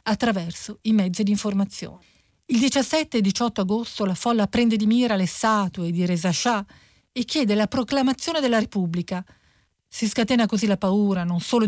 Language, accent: Italian, native